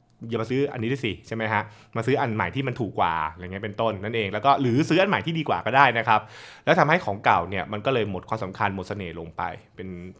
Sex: male